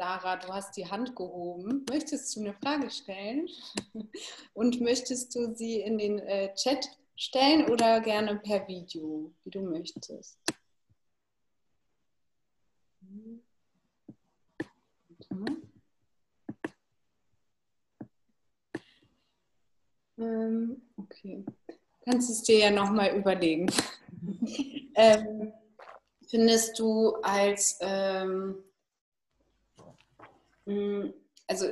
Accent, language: German, German